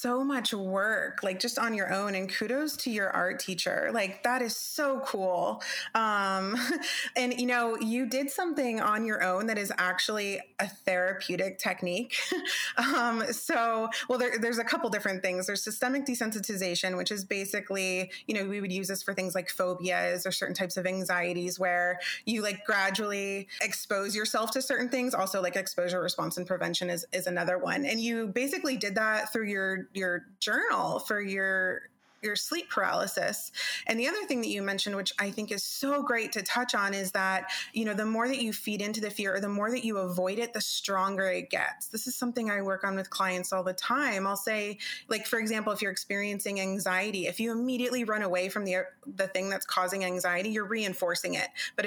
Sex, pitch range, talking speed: female, 190-235 Hz, 200 wpm